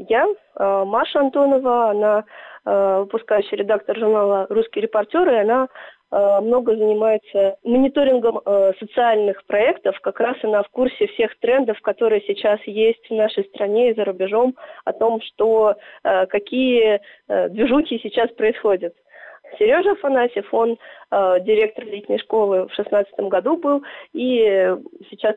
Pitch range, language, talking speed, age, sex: 200-255 Hz, Russian, 125 wpm, 20-39, female